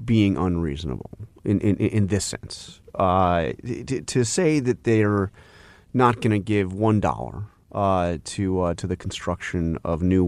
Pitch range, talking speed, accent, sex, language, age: 90-120 Hz, 150 wpm, American, male, English, 30-49